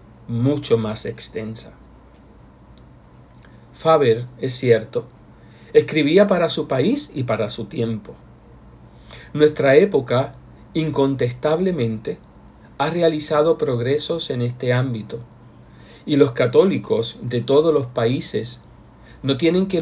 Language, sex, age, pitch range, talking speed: Spanish, male, 50-69, 115-150 Hz, 100 wpm